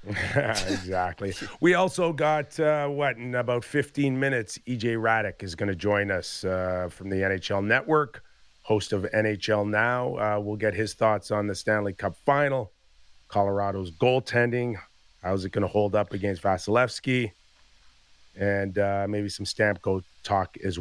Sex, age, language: male, 40-59, English